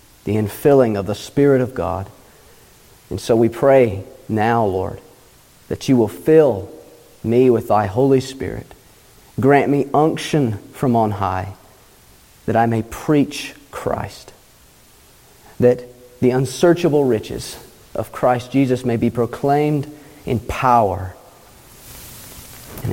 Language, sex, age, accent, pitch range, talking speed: English, male, 40-59, American, 110-135 Hz, 120 wpm